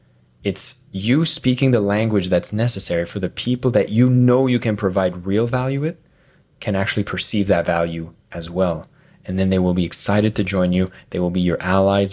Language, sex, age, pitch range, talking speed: English, male, 20-39, 95-125 Hz, 200 wpm